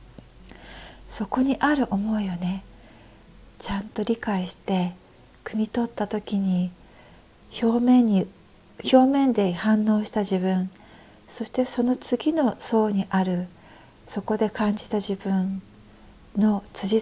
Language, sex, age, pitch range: Japanese, female, 60-79, 190-225 Hz